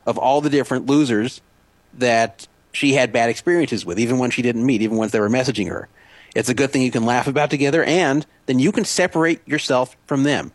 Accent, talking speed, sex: American, 220 wpm, male